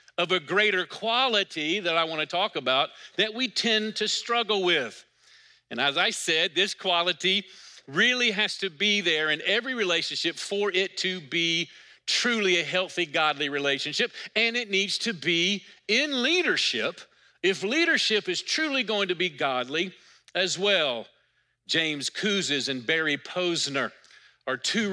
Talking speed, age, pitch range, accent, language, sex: 150 wpm, 50-69, 165-215 Hz, American, English, male